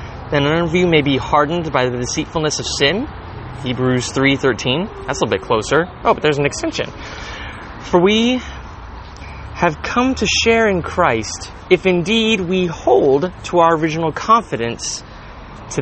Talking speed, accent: 155 wpm, American